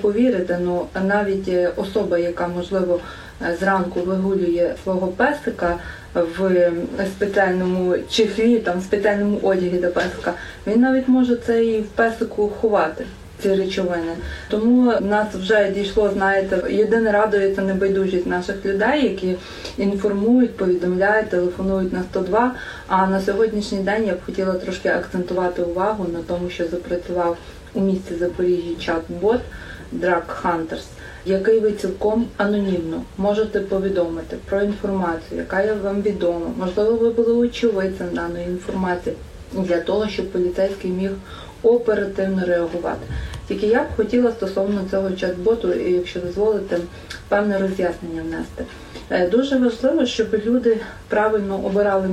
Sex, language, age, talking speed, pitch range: female, Ukrainian, 20-39, 125 wpm, 180-220 Hz